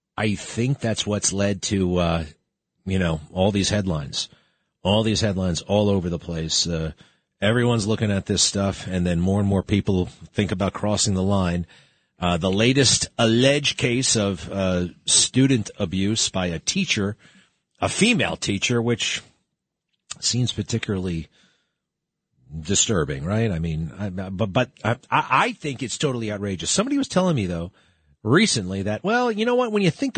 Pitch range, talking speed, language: 95-130 Hz, 160 wpm, English